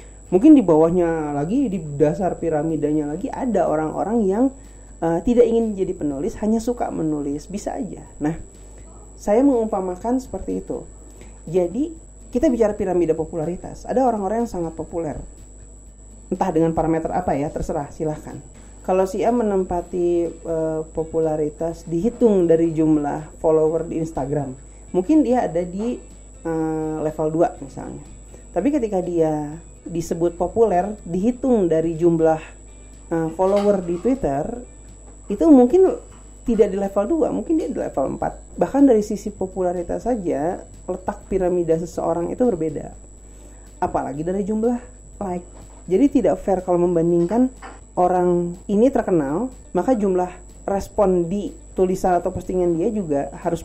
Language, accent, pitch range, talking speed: Indonesian, native, 160-215 Hz, 130 wpm